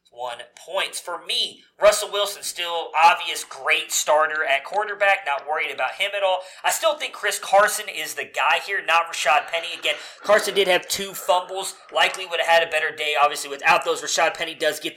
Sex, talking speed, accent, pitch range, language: male, 200 wpm, American, 155-210 Hz, English